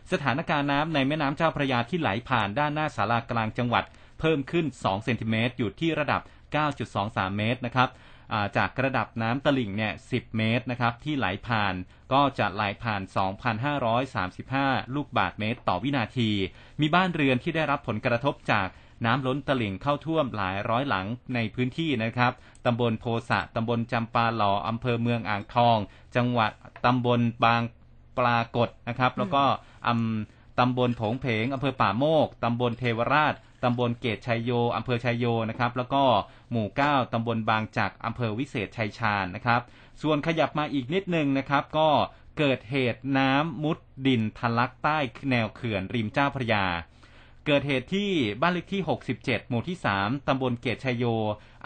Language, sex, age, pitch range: Thai, male, 30-49, 110-135 Hz